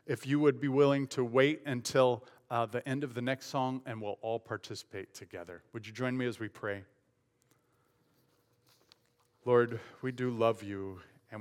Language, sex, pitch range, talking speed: English, male, 105-120 Hz, 175 wpm